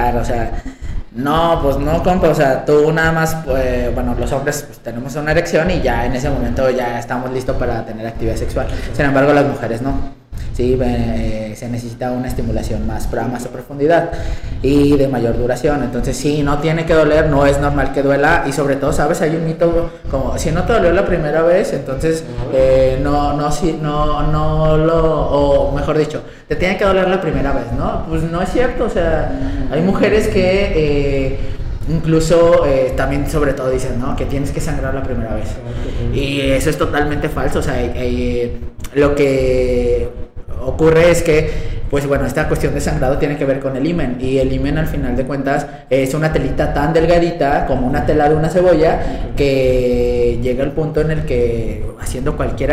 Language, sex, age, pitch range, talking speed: Spanish, male, 20-39, 125-150 Hz, 195 wpm